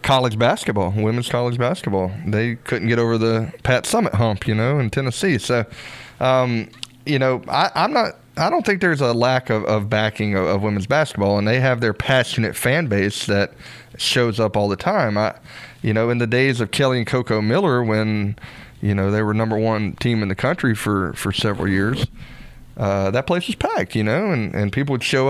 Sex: male